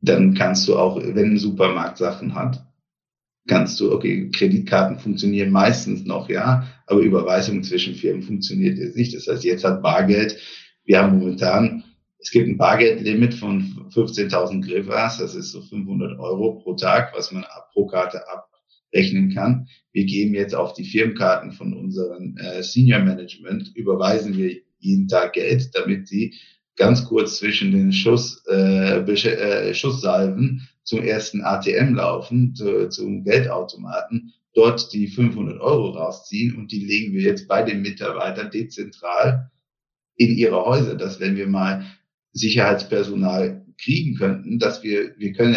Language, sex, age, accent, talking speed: German, male, 50-69, German, 150 wpm